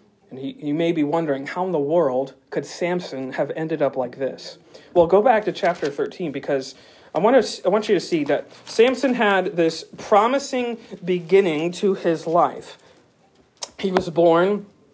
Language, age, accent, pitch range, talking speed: English, 40-59, American, 150-195 Hz, 160 wpm